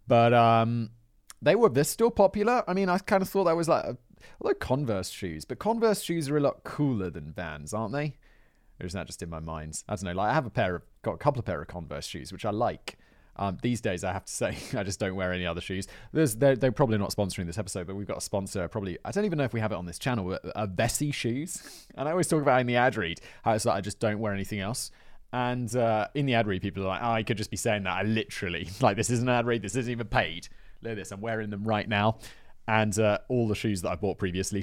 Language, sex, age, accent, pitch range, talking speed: English, male, 30-49, British, 100-140 Hz, 285 wpm